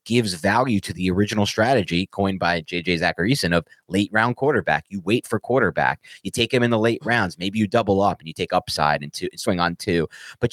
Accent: American